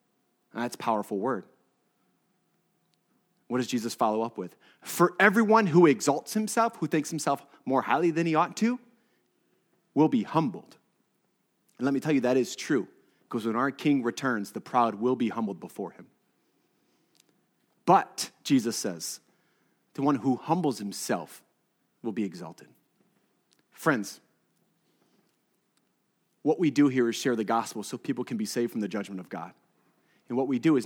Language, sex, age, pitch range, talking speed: English, male, 30-49, 120-170 Hz, 160 wpm